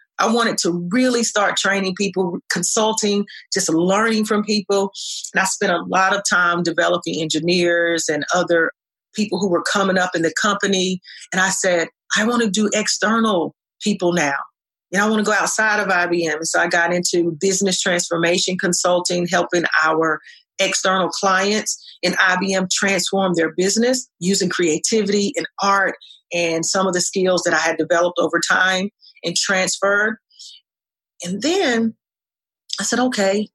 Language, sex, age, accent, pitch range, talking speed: English, female, 40-59, American, 170-200 Hz, 155 wpm